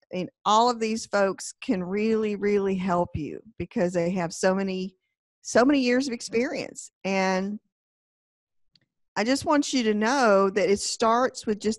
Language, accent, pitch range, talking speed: English, American, 190-240 Hz, 165 wpm